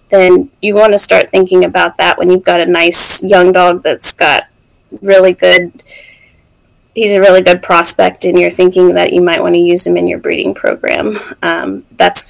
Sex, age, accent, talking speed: female, 20-39, American, 195 wpm